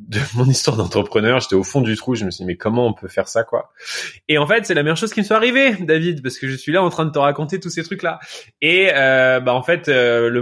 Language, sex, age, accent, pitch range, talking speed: French, male, 20-39, French, 110-150 Hz, 300 wpm